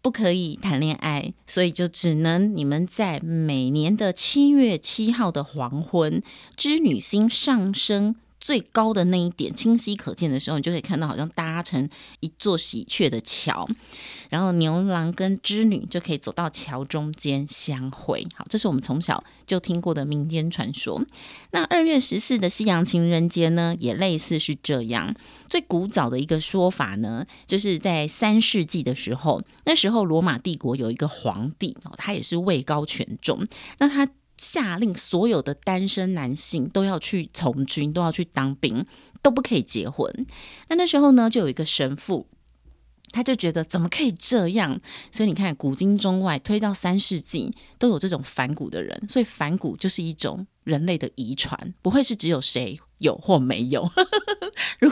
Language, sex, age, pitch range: Chinese, female, 30-49, 155-220 Hz